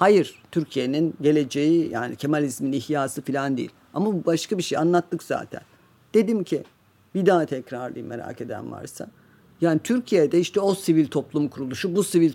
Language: Turkish